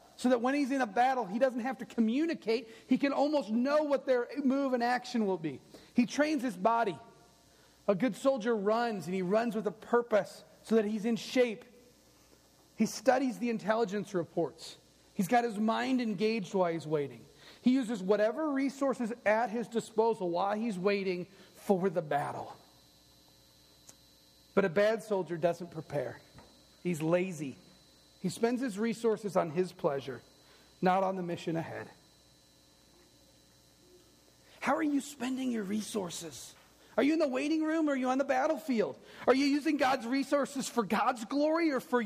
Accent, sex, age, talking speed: American, male, 40-59, 165 wpm